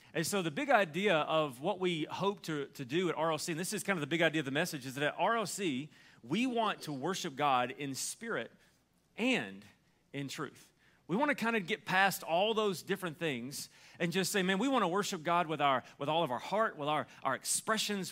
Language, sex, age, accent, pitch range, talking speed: English, male, 40-59, American, 145-195 Hz, 230 wpm